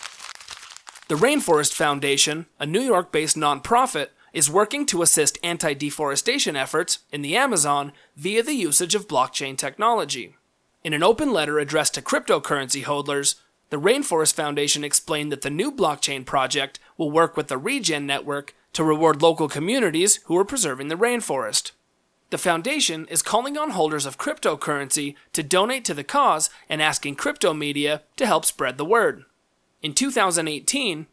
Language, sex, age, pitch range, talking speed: English, male, 30-49, 145-200 Hz, 150 wpm